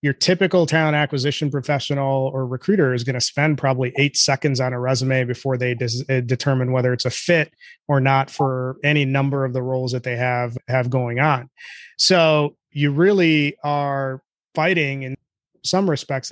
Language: English